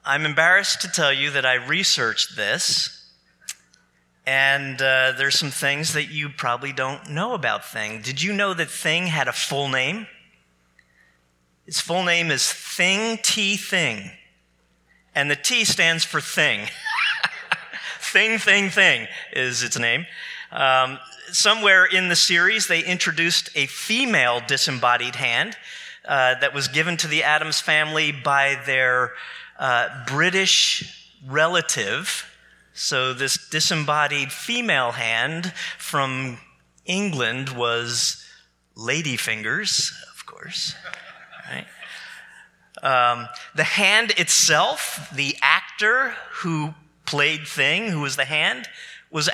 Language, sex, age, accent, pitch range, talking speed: English, male, 40-59, American, 130-180 Hz, 120 wpm